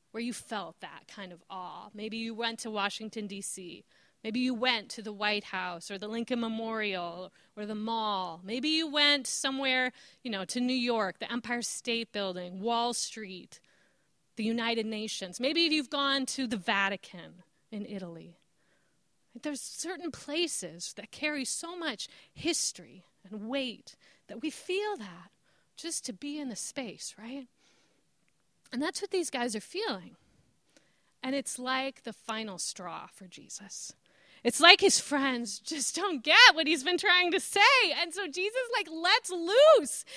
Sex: female